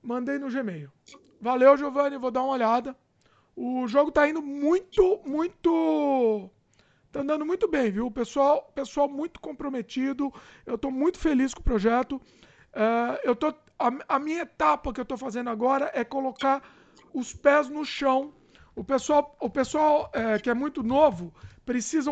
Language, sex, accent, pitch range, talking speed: Portuguese, male, Brazilian, 245-295 Hz, 165 wpm